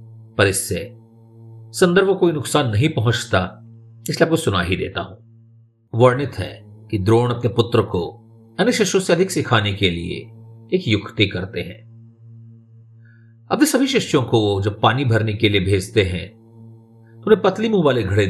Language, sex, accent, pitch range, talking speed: Hindi, male, native, 105-120 Hz, 155 wpm